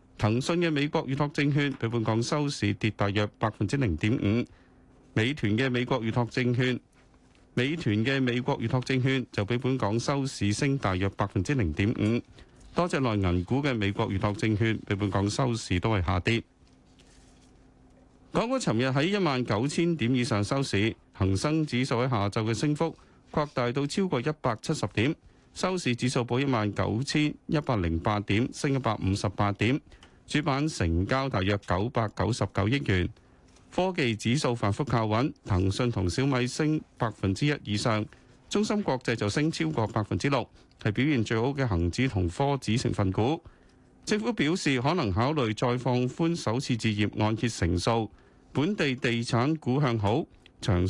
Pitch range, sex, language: 105-140 Hz, male, Chinese